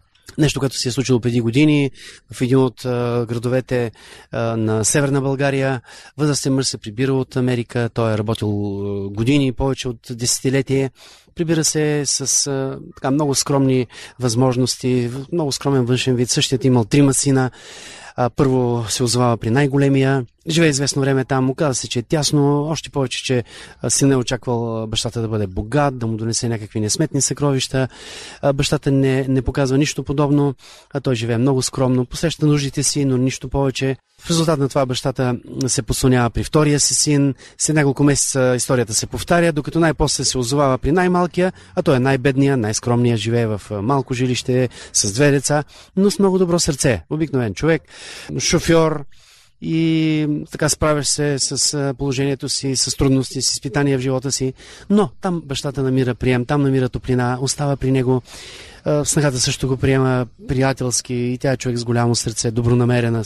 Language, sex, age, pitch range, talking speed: Bulgarian, male, 30-49, 125-145 Hz, 165 wpm